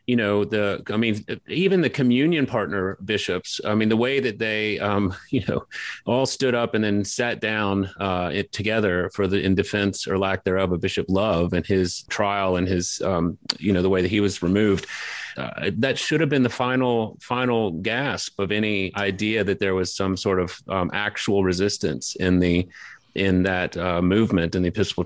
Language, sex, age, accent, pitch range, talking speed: English, male, 30-49, American, 95-110 Hz, 200 wpm